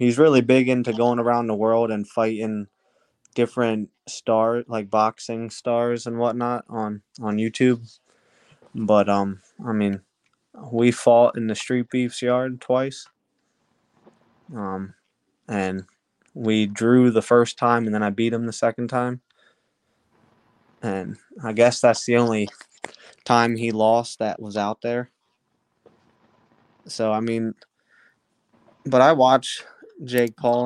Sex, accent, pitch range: male, American, 110-120 Hz